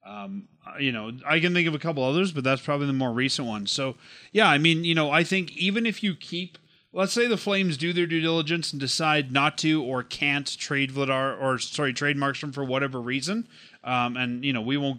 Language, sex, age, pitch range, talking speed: English, male, 30-49, 140-185 Hz, 230 wpm